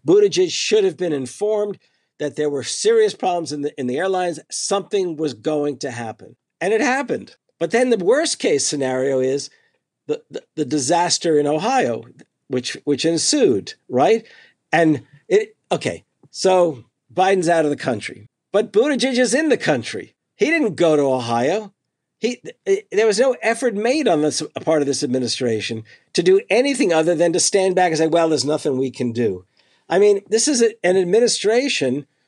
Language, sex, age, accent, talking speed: English, male, 50-69, American, 175 wpm